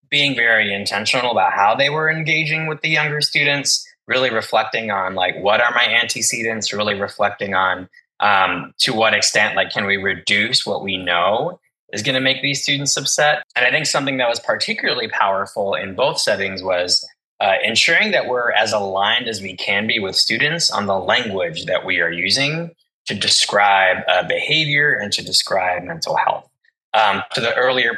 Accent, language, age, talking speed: American, English, 20-39, 180 wpm